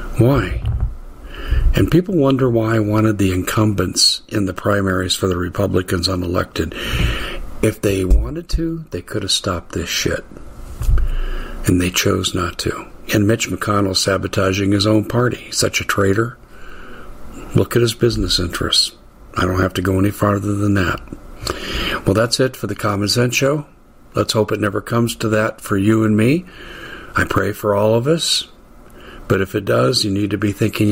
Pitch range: 100-120 Hz